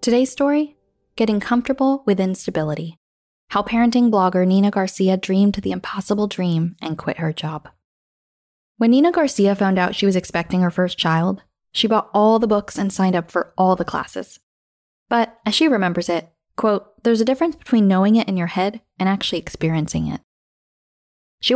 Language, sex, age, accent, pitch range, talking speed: English, female, 10-29, American, 175-225 Hz, 175 wpm